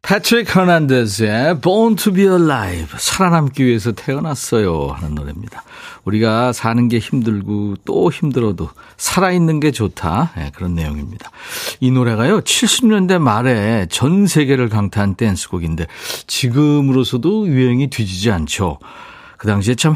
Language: Korean